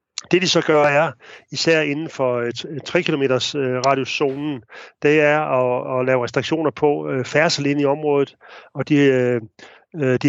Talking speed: 135 wpm